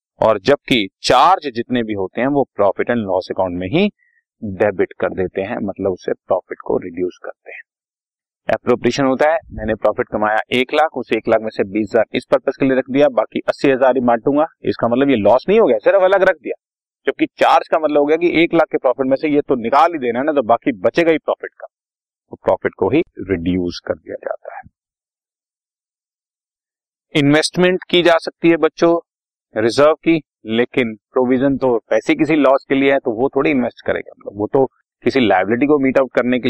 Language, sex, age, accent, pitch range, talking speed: Hindi, male, 40-59, native, 115-165 Hz, 205 wpm